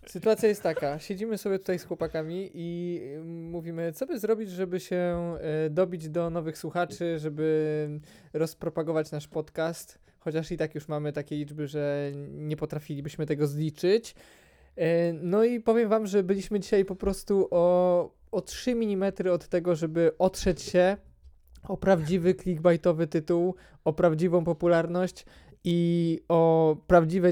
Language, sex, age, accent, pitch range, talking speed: Polish, male, 20-39, native, 150-180 Hz, 140 wpm